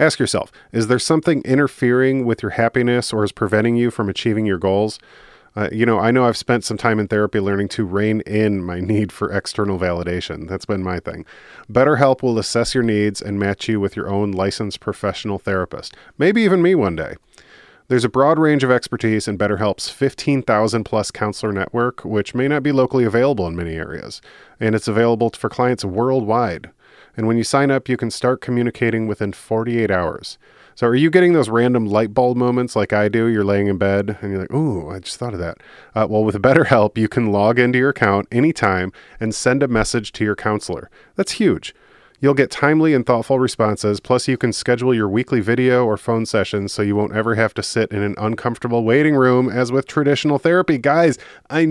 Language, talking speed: English, 210 wpm